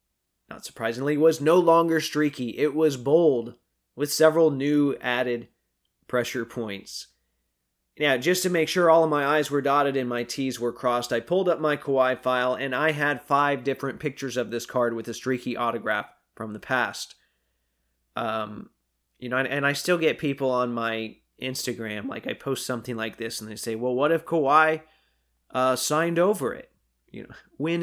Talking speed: 180 wpm